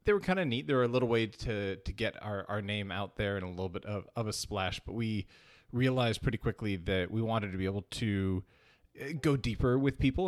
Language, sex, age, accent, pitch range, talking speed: English, male, 30-49, American, 95-125 Hz, 245 wpm